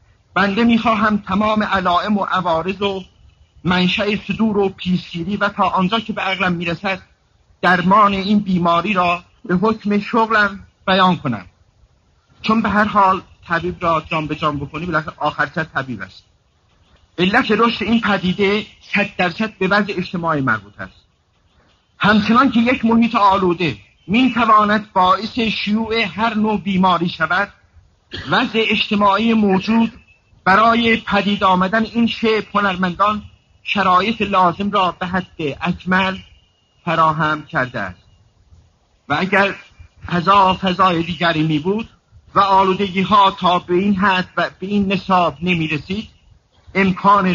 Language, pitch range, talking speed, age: Persian, 160-205 Hz, 130 wpm, 50-69